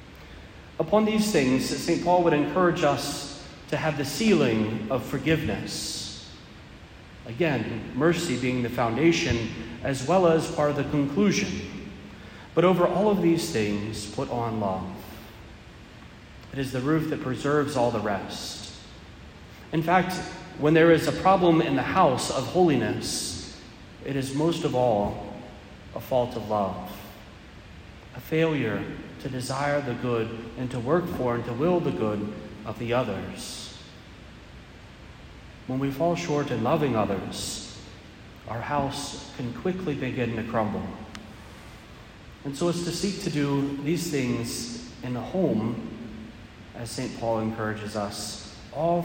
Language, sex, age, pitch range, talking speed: English, male, 40-59, 110-155 Hz, 140 wpm